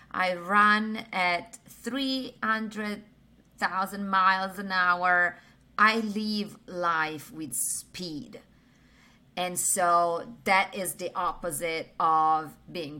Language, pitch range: English, 165-210 Hz